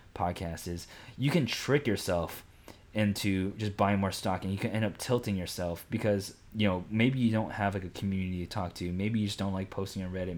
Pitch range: 100-120 Hz